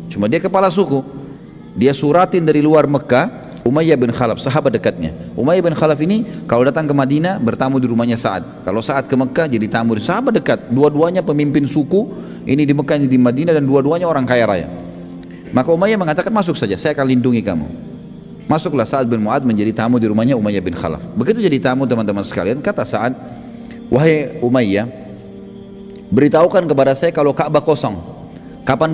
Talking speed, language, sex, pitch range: 175 wpm, Indonesian, male, 115-155 Hz